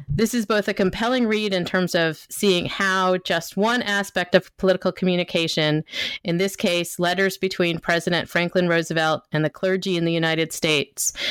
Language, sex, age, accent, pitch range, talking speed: English, female, 30-49, American, 160-190 Hz, 170 wpm